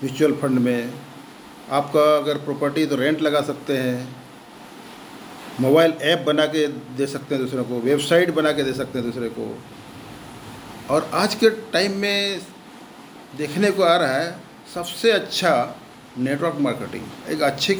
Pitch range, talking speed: 135-160 Hz, 150 wpm